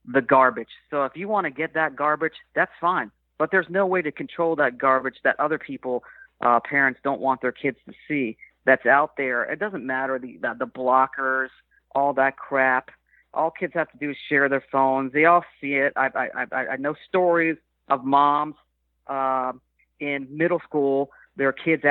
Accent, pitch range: American, 130-160 Hz